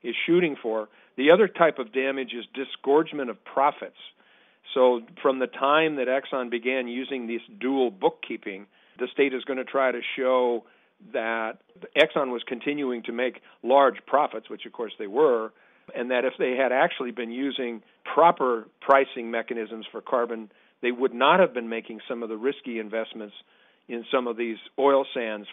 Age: 50-69